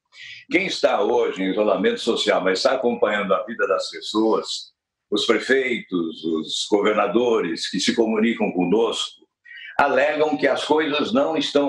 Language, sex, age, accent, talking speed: Portuguese, male, 60-79, Brazilian, 140 wpm